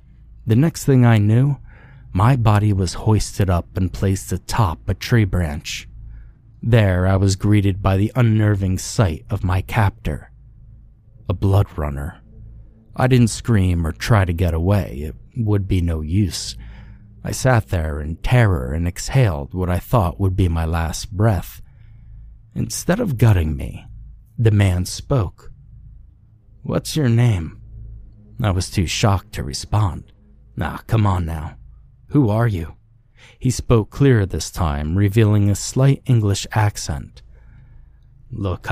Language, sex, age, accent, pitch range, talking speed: English, male, 30-49, American, 90-115 Hz, 145 wpm